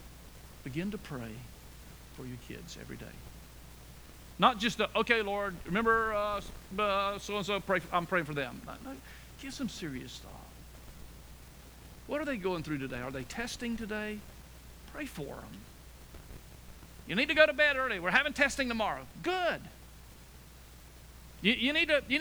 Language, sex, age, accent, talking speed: English, male, 50-69, American, 140 wpm